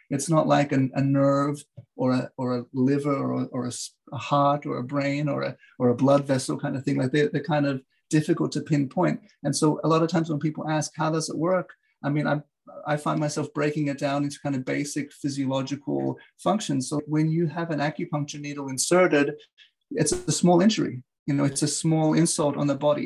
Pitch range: 135-150 Hz